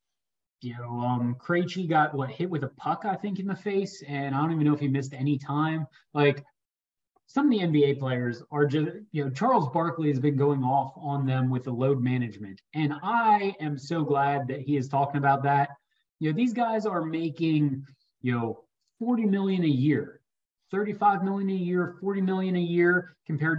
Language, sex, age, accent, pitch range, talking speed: English, male, 30-49, American, 135-175 Hz, 200 wpm